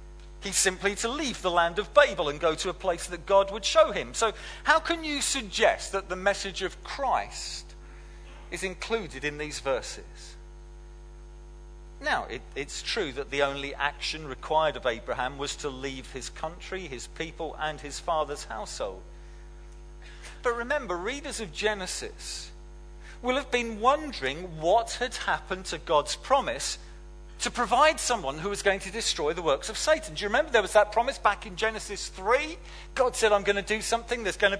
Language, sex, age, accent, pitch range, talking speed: English, male, 40-59, British, 130-220 Hz, 175 wpm